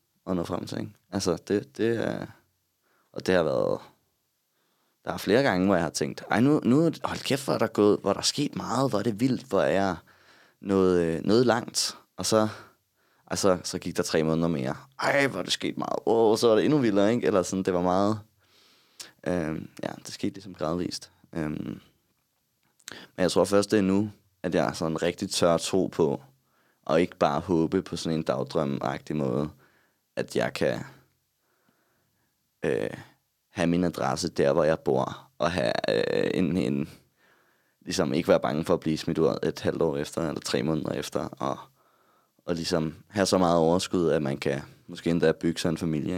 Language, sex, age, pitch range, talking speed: Danish, male, 20-39, 80-100 Hz, 200 wpm